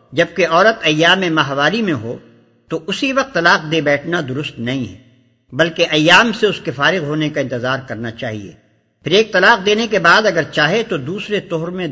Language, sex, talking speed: Urdu, male, 190 wpm